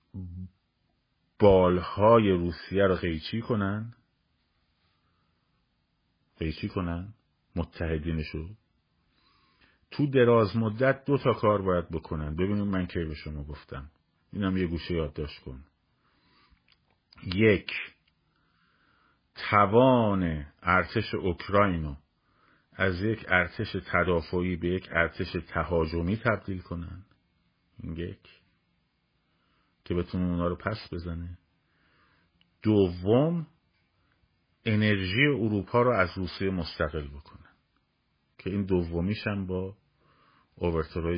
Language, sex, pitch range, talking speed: Persian, male, 80-105 Hz, 90 wpm